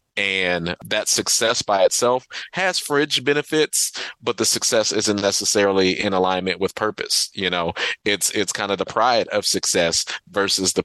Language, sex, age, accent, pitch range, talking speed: English, male, 30-49, American, 95-110 Hz, 160 wpm